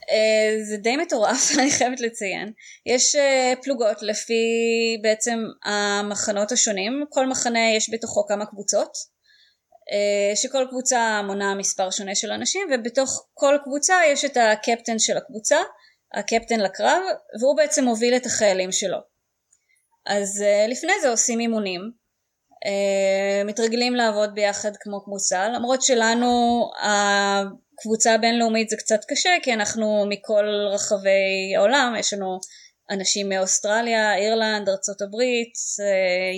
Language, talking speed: Hebrew, 115 wpm